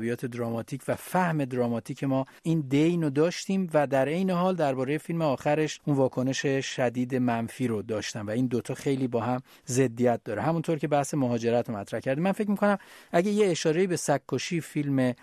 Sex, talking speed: male, 180 wpm